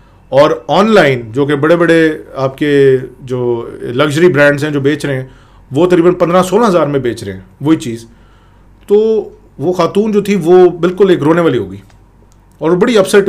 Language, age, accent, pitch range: English, 40-59, Indian, 120-180 Hz